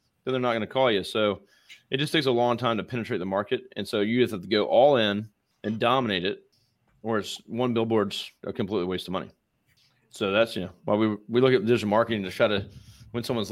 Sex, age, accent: male, 30-49, American